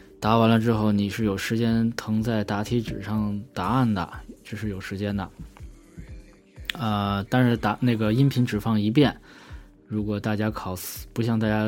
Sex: male